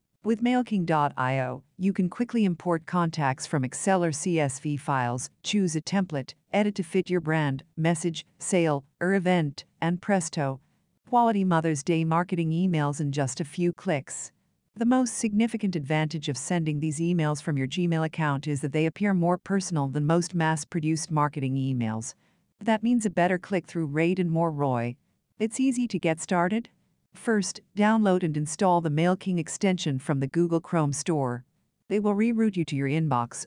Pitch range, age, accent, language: 150-190 Hz, 50-69, American, English